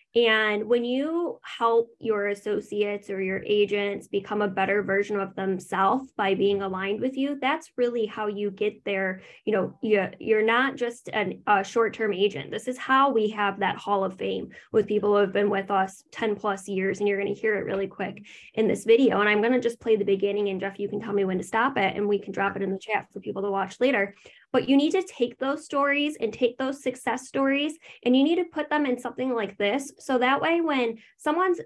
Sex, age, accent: female, 10-29, American